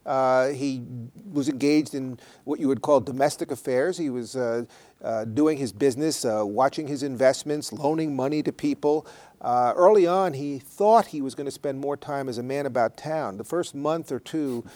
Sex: male